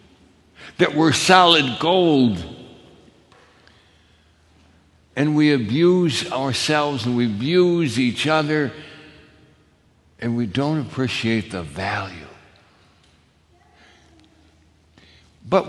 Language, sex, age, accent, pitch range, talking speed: English, male, 60-79, American, 85-145 Hz, 75 wpm